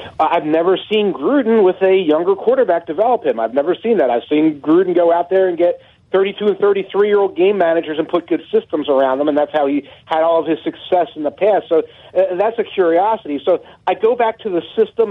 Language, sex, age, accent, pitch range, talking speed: English, male, 40-59, American, 155-205 Hz, 235 wpm